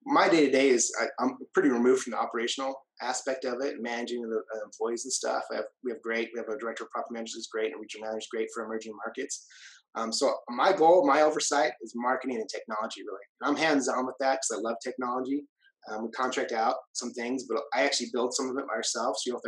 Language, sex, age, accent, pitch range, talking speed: English, male, 30-49, American, 115-135 Hz, 235 wpm